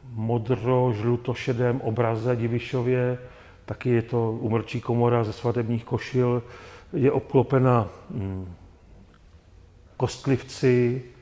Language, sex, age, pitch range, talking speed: Czech, male, 40-59, 105-125 Hz, 80 wpm